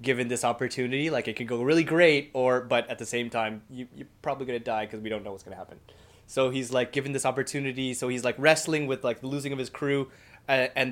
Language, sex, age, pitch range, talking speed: English, male, 20-39, 120-140 Hz, 255 wpm